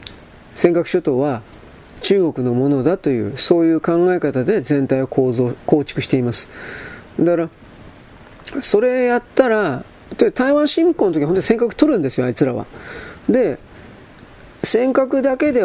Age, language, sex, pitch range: 40-59, Japanese, male, 130-220 Hz